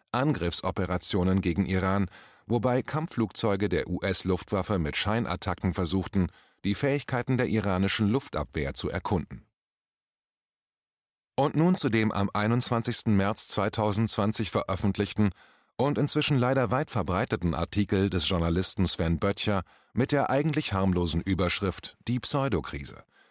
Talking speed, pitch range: 110 wpm, 90-120 Hz